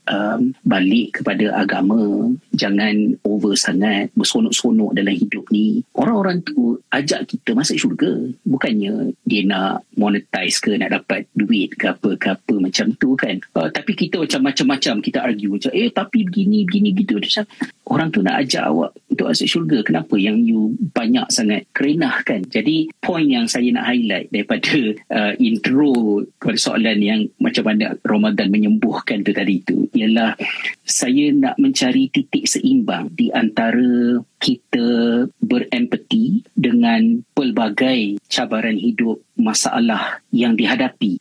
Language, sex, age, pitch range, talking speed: Malay, male, 40-59, 210-260 Hz, 135 wpm